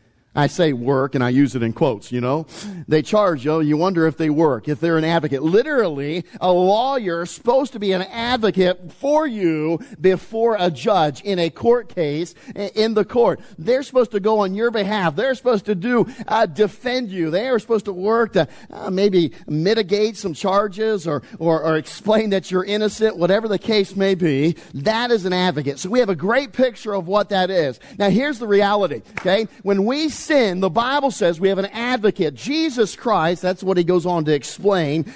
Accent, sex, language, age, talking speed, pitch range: American, male, English, 50-69, 205 wpm, 170-235 Hz